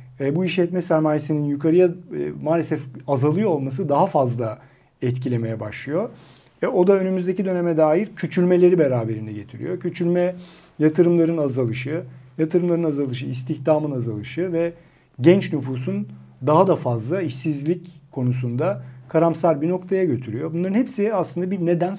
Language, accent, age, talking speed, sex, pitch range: Turkish, native, 50-69, 125 wpm, male, 125-170 Hz